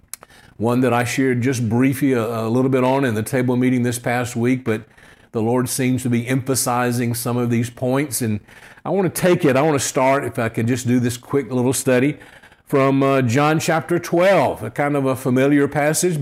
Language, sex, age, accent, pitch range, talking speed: English, male, 50-69, American, 120-140 Hz, 220 wpm